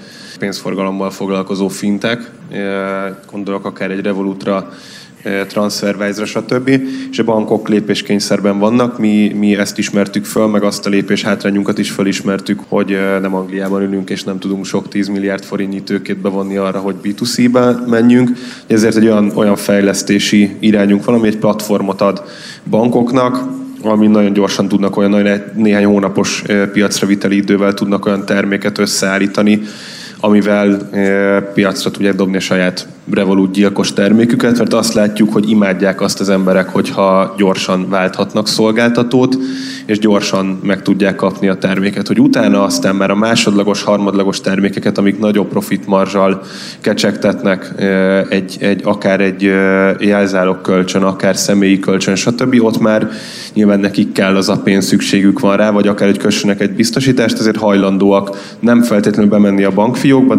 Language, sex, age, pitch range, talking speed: Hungarian, male, 10-29, 95-105 Hz, 135 wpm